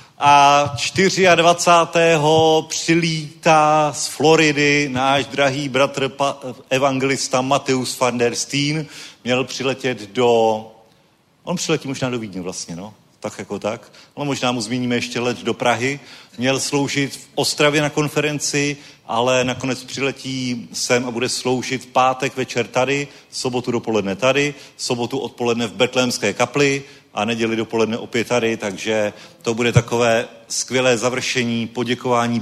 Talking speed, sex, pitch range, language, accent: 135 wpm, male, 115-140 Hz, Czech, native